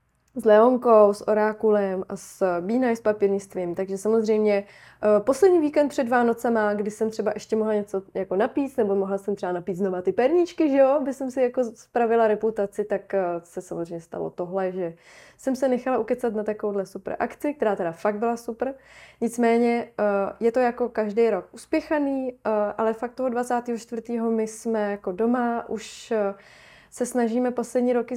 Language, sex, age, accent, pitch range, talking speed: Czech, female, 20-39, native, 200-245 Hz, 170 wpm